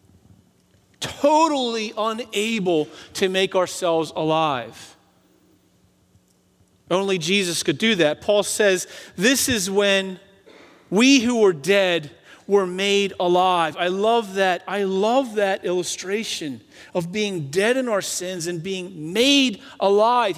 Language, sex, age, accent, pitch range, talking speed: English, male, 40-59, American, 190-255 Hz, 120 wpm